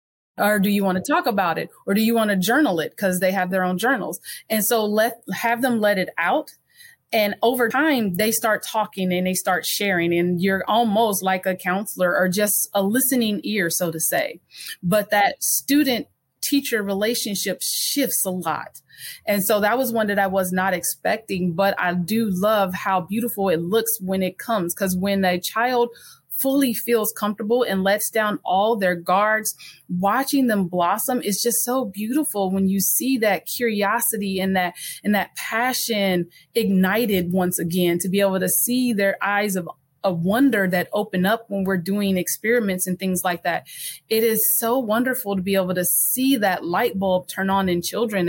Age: 30-49